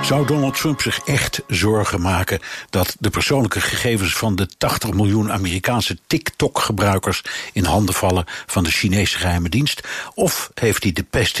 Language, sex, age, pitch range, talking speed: Dutch, male, 60-79, 95-120 Hz, 160 wpm